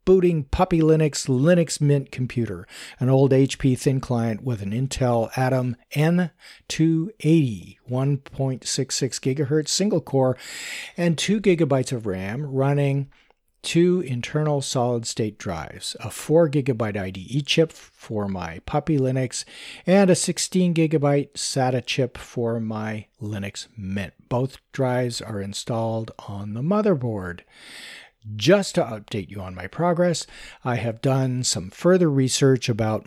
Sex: male